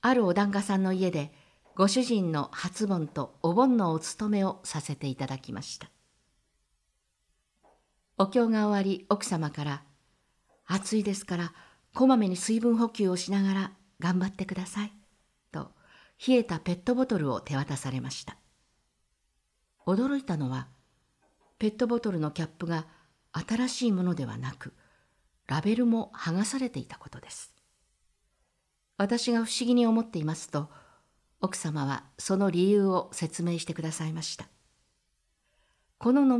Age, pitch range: 50-69, 150-220 Hz